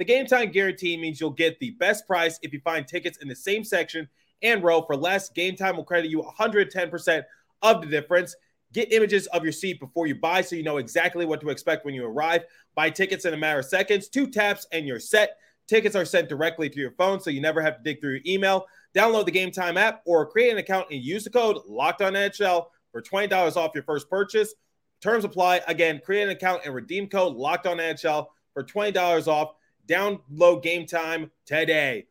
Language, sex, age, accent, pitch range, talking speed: English, male, 30-49, American, 145-190 Hz, 215 wpm